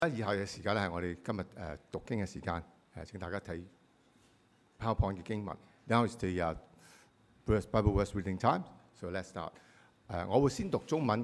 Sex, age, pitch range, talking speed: male, 50-69, 90-115 Hz, 80 wpm